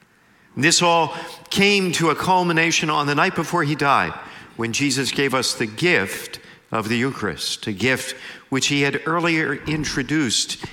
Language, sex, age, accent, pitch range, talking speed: English, male, 50-69, American, 130-160 Hz, 155 wpm